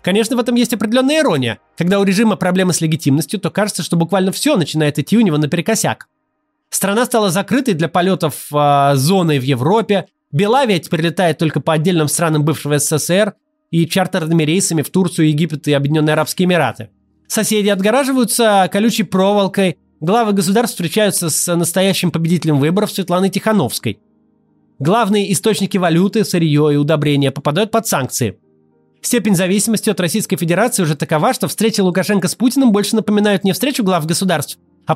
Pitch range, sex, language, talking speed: 155-210 Hz, male, Russian, 155 wpm